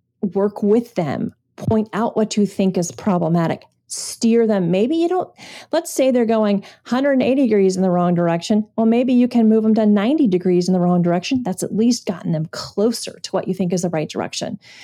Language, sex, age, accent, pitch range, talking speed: English, female, 40-59, American, 180-230 Hz, 210 wpm